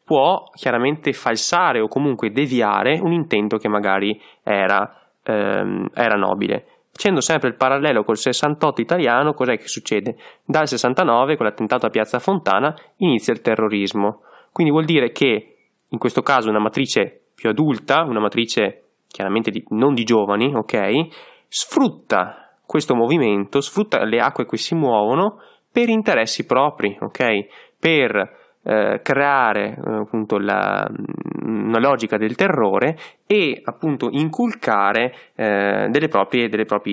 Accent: native